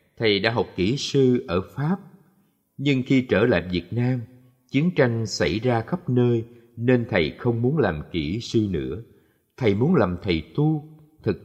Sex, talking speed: male, 175 wpm